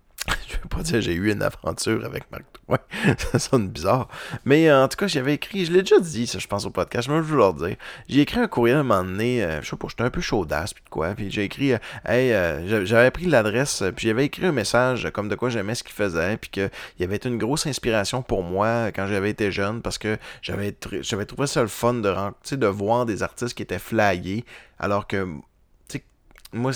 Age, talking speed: 30-49, 245 wpm